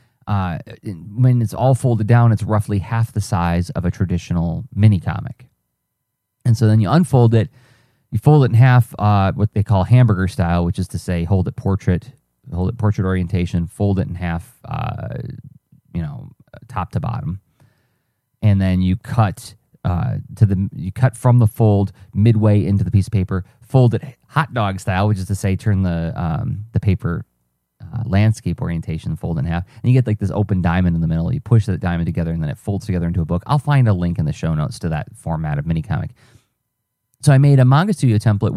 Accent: American